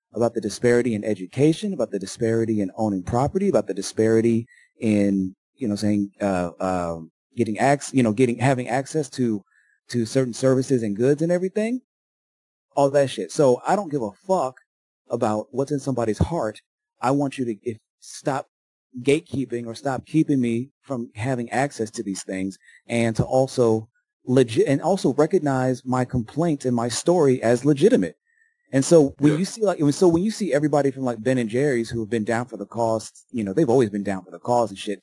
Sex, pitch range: male, 110-140 Hz